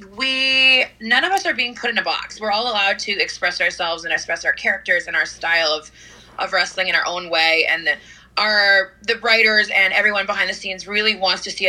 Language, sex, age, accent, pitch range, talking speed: English, female, 20-39, American, 175-210 Hz, 225 wpm